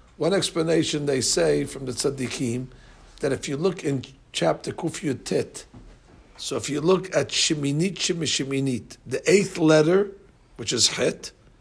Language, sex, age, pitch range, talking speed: English, male, 60-79, 130-180 Hz, 140 wpm